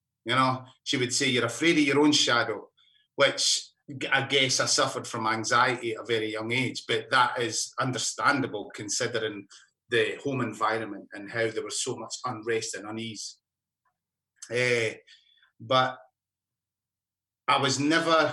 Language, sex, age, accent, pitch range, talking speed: English, male, 30-49, British, 120-150 Hz, 145 wpm